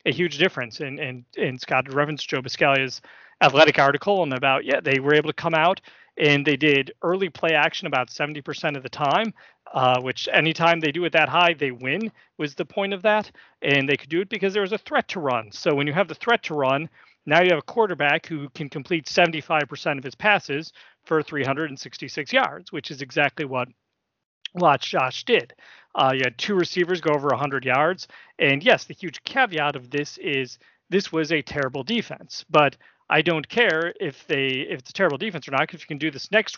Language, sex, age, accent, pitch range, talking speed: English, male, 40-59, American, 140-180 Hz, 215 wpm